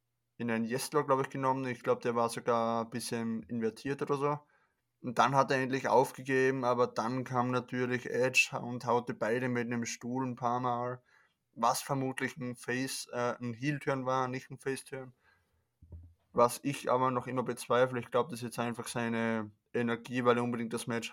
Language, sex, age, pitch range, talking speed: German, male, 20-39, 120-130 Hz, 185 wpm